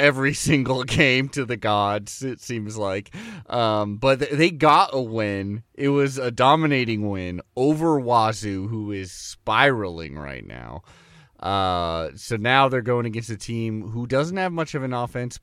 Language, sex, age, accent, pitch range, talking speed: English, male, 30-49, American, 105-145 Hz, 165 wpm